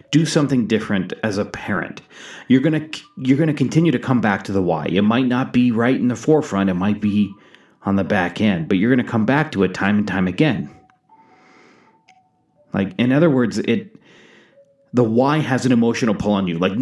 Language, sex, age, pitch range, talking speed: English, male, 30-49, 115-155 Hz, 205 wpm